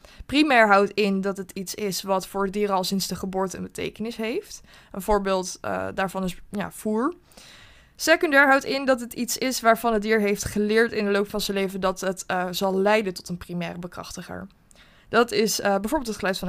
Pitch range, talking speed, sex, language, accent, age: 200-240 Hz, 215 wpm, female, Dutch, Dutch, 20-39